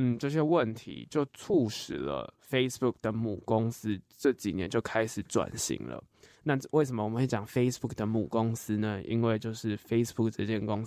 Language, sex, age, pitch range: Chinese, male, 20-39, 110-135 Hz